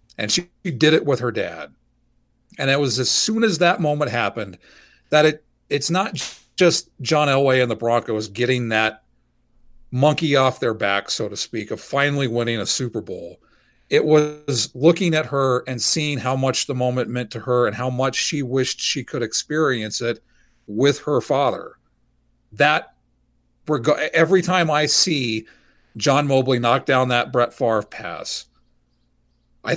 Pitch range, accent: 120-150 Hz, American